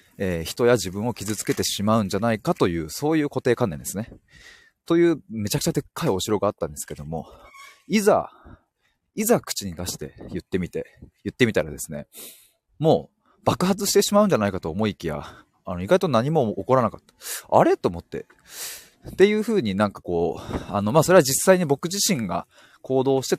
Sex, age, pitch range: male, 20-39, 95-155 Hz